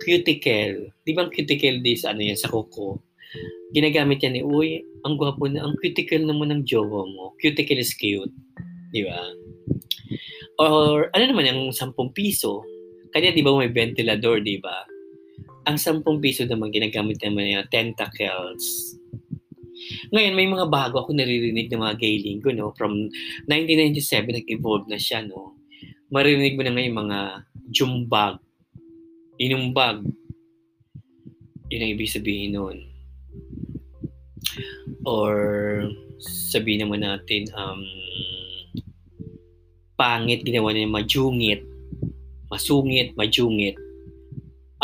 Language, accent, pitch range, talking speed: Filipino, native, 100-140 Hz, 120 wpm